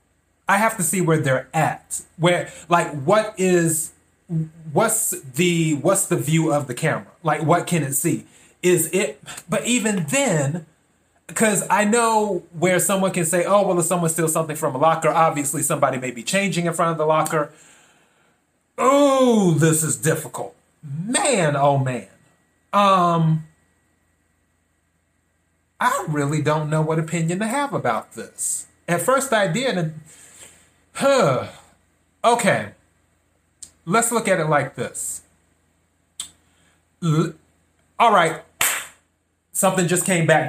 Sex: male